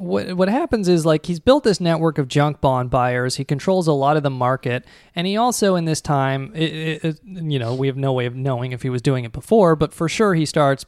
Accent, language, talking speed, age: American, English, 260 wpm, 20-39